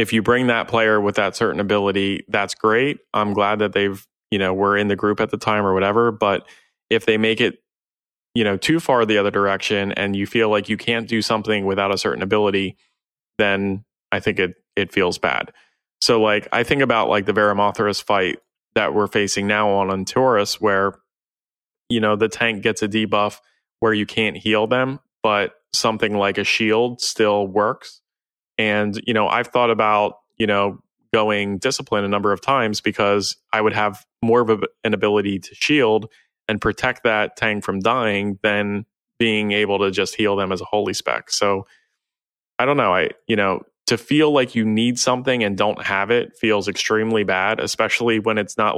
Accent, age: American, 20-39